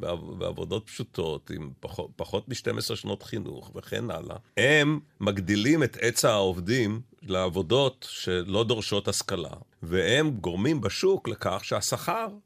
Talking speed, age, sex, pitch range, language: 120 wpm, 40-59, male, 95-130 Hz, Hebrew